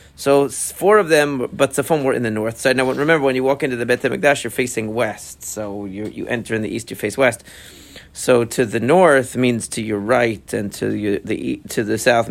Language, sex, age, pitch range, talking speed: English, male, 40-59, 115-145 Hz, 225 wpm